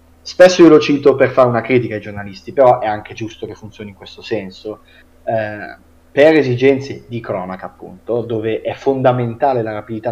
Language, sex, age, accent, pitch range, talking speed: Italian, male, 30-49, native, 105-125 Hz, 180 wpm